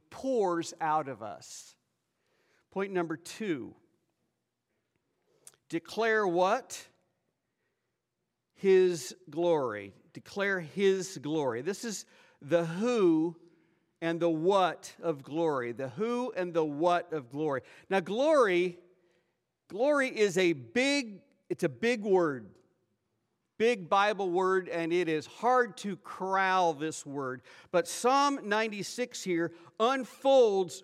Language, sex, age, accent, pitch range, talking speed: English, male, 50-69, American, 170-225 Hz, 110 wpm